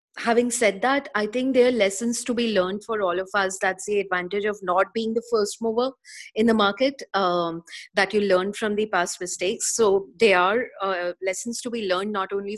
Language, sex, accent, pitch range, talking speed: English, female, Indian, 180-220 Hz, 215 wpm